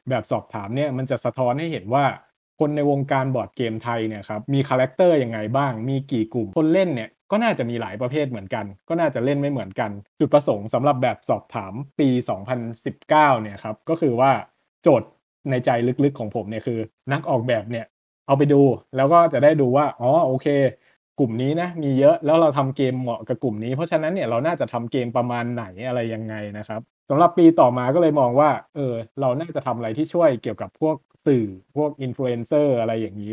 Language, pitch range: Thai, 115-140 Hz